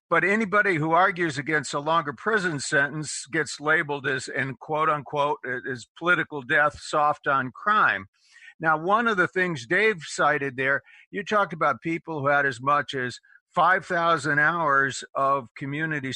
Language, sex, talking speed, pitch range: English, male, 155 wpm, 135-185 Hz